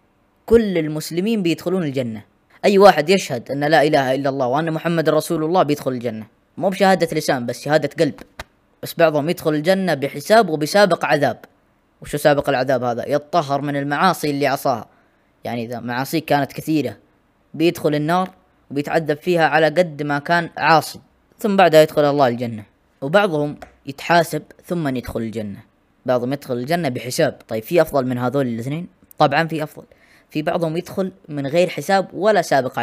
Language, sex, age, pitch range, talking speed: Arabic, female, 20-39, 135-170 Hz, 155 wpm